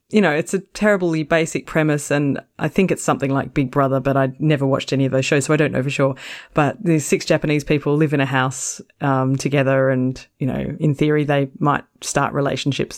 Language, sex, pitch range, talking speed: English, female, 140-170 Hz, 225 wpm